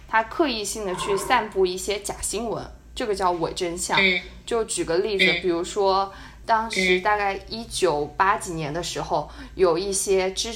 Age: 20-39